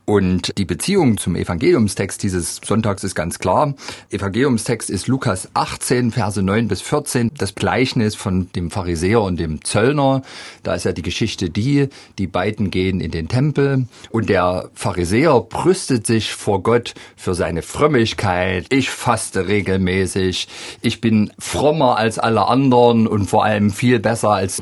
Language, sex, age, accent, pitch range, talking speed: German, male, 40-59, German, 90-115 Hz, 155 wpm